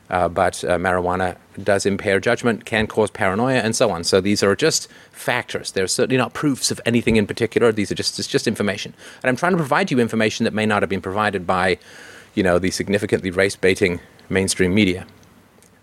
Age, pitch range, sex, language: 30-49, 100-130 Hz, male, English